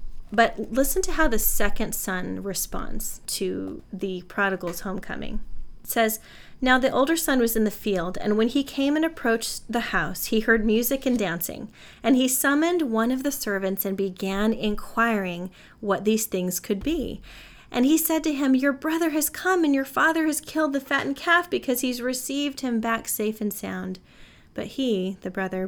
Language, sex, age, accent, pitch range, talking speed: English, female, 30-49, American, 195-260 Hz, 185 wpm